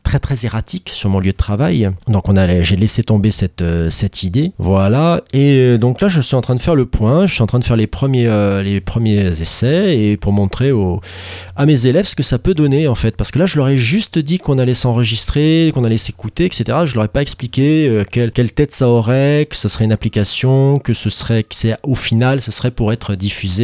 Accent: French